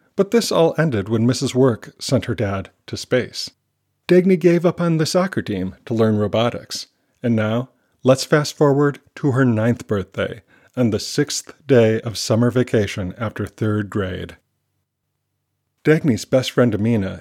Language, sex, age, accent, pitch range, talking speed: English, male, 40-59, American, 105-130 Hz, 155 wpm